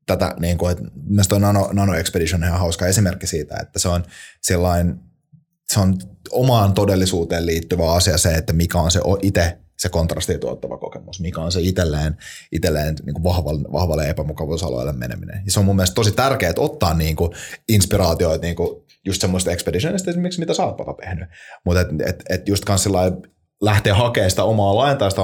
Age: 30-49